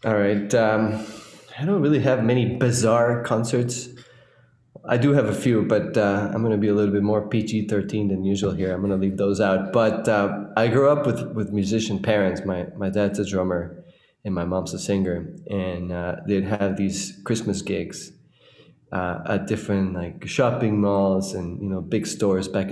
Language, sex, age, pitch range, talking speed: English, male, 20-39, 95-110 Hz, 195 wpm